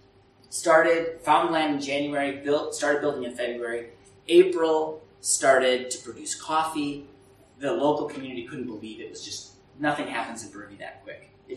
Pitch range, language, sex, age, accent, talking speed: 115-160 Hz, English, male, 30-49, American, 160 wpm